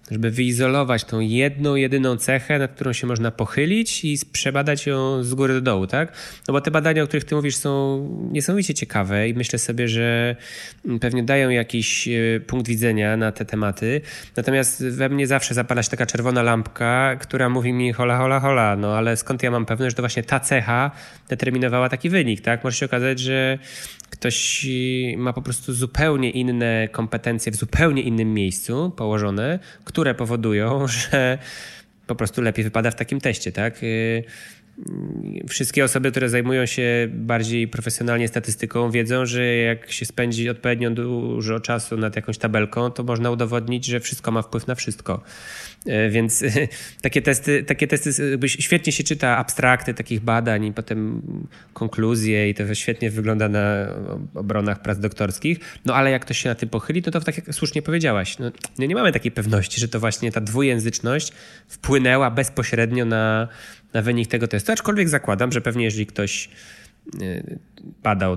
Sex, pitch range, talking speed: male, 115-135 Hz, 165 wpm